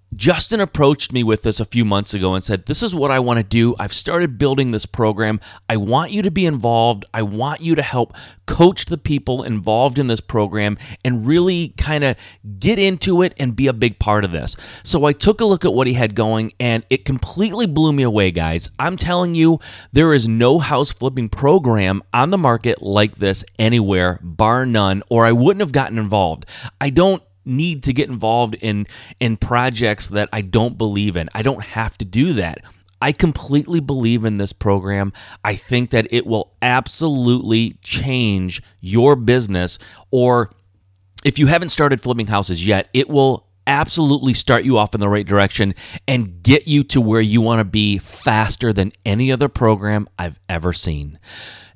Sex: male